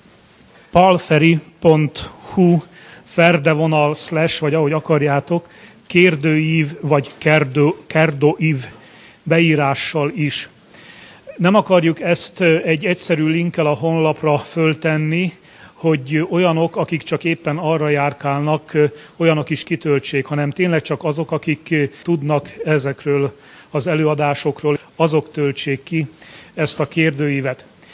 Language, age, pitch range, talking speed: Hungarian, 40-59, 145-165 Hz, 95 wpm